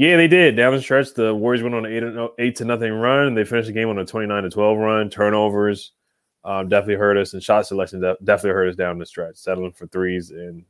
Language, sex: English, male